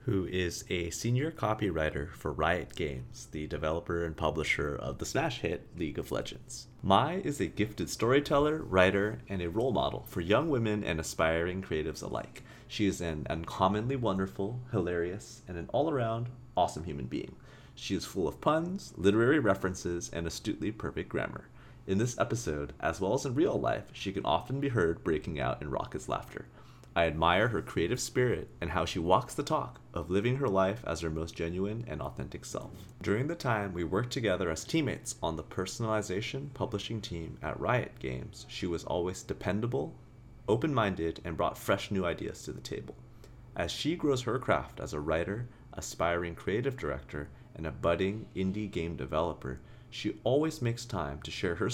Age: 30-49